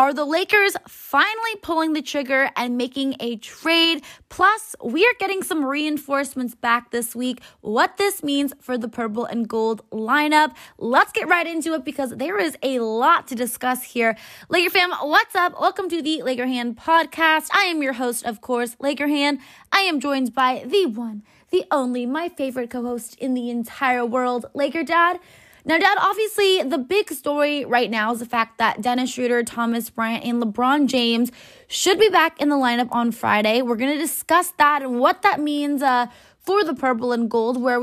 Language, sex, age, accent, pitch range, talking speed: English, female, 20-39, American, 240-320 Hz, 190 wpm